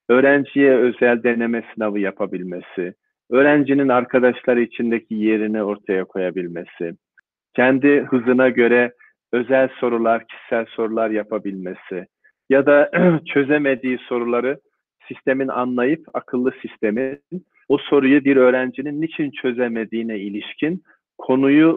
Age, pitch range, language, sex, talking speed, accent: 40-59, 115-140 Hz, Turkish, male, 95 wpm, native